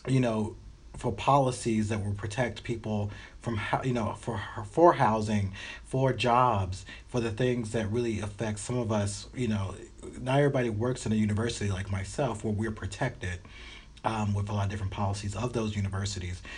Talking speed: 175 wpm